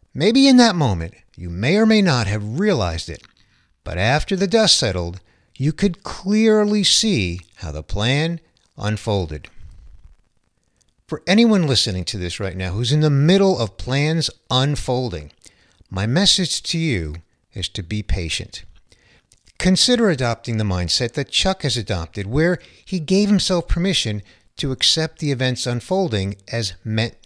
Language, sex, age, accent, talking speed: English, male, 50-69, American, 150 wpm